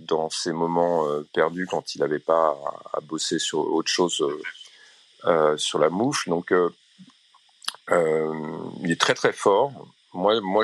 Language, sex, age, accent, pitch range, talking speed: English, male, 40-59, French, 85-120 Hz, 170 wpm